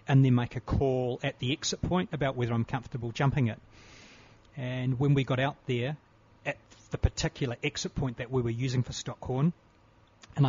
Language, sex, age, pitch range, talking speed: English, male, 40-59, 115-140 Hz, 190 wpm